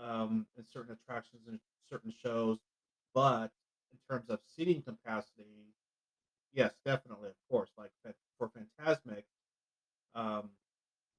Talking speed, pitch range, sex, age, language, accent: 115 wpm, 105-125 Hz, male, 40-59, English, American